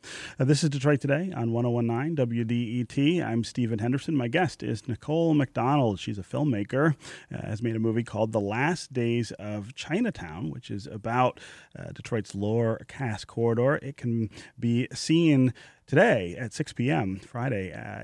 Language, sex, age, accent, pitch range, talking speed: English, male, 30-49, American, 110-140 Hz, 160 wpm